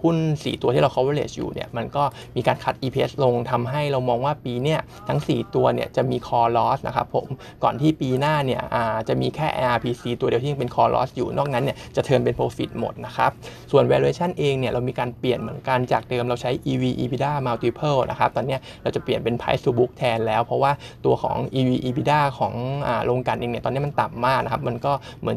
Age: 20-39